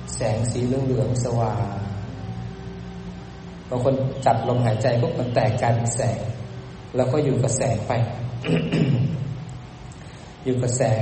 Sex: male